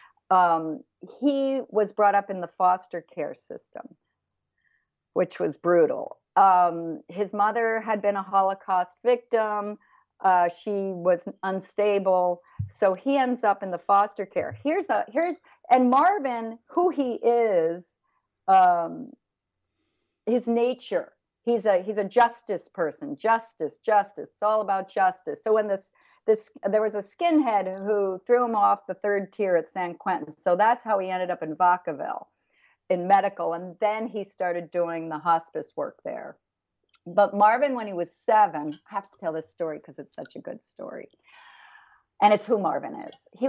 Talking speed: 160 wpm